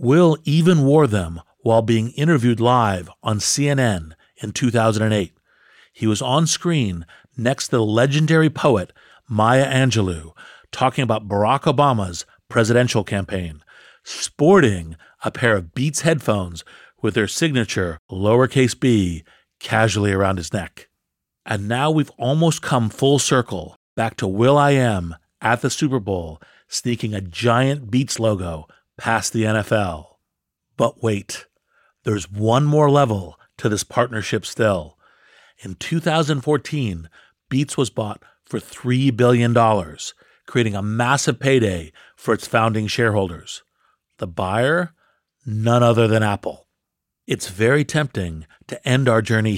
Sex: male